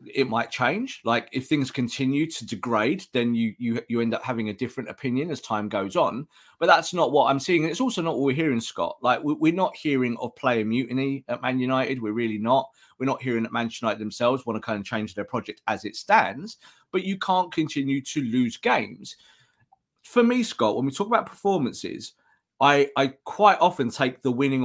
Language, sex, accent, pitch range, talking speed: English, male, British, 125-190 Hz, 215 wpm